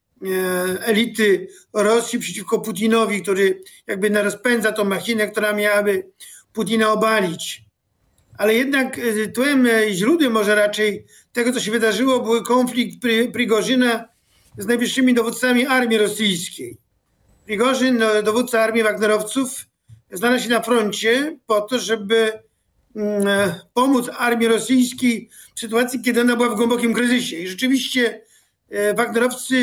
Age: 50-69